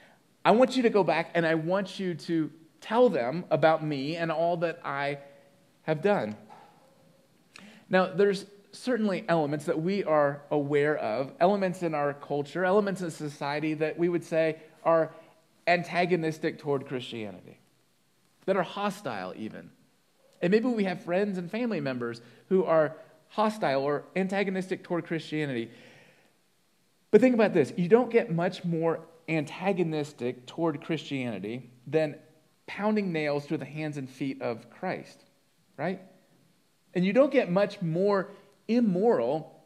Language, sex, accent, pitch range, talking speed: English, male, American, 150-190 Hz, 140 wpm